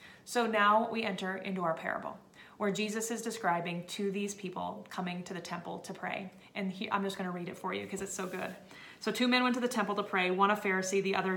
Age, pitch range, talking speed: 30-49, 195-225 Hz, 250 wpm